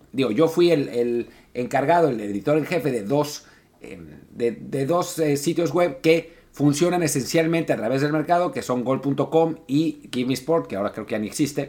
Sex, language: male, Spanish